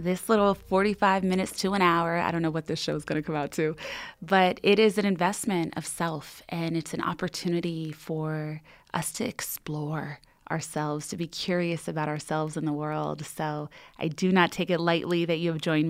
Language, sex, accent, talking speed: English, female, American, 205 wpm